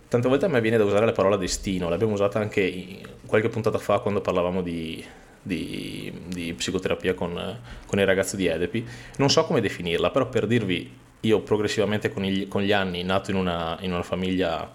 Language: Italian